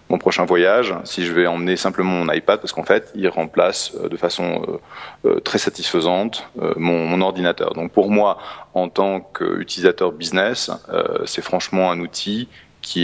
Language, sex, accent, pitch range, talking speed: French, male, French, 90-135 Hz, 150 wpm